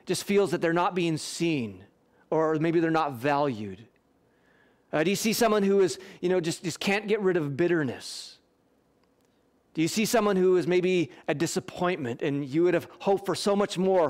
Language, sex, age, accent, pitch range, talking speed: English, male, 30-49, American, 165-210 Hz, 195 wpm